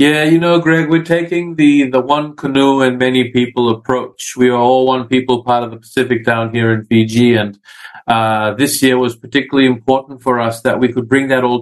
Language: English